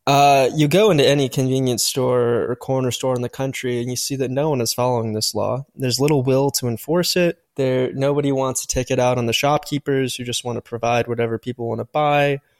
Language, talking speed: English, 235 wpm